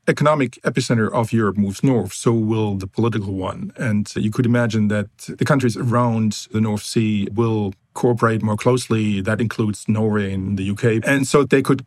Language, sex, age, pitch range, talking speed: English, male, 40-59, 105-125 Hz, 180 wpm